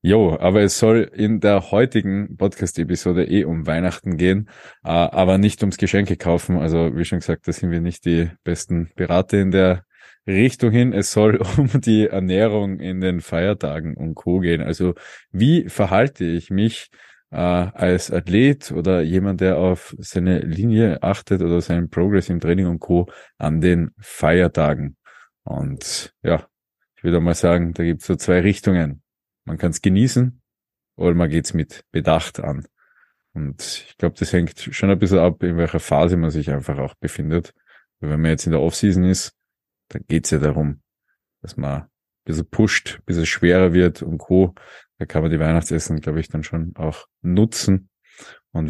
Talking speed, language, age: 180 wpm, German, 20-39